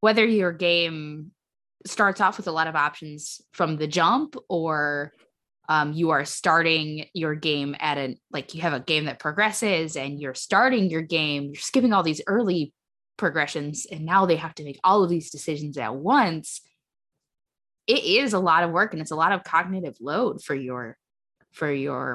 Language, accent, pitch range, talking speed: English, American, 140-175 Hz, 185 wpm